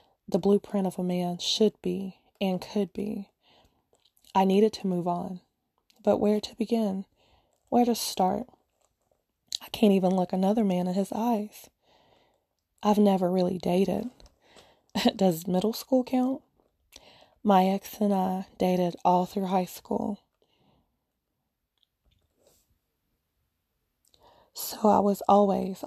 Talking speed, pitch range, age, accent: 120 wpm, 185-215 Hz, 20-39, American